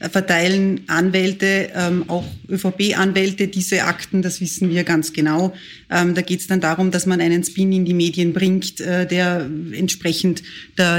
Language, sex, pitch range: German, female, 170-195 Hz